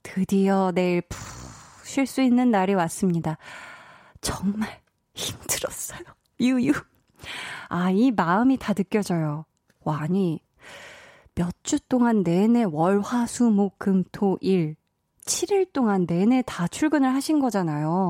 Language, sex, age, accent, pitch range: Korean, female, 20-39, native, 175-240 Hz